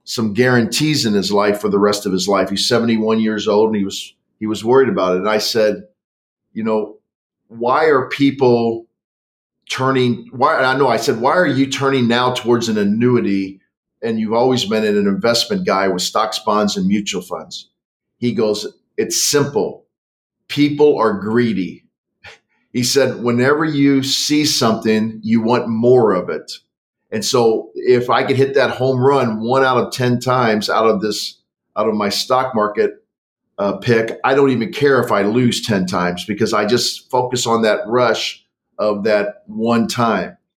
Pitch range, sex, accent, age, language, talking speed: 105-125 Hz, male, American, 40-59, English, 175 wpm